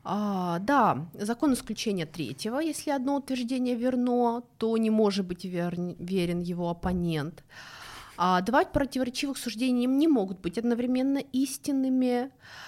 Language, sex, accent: Russian, female, native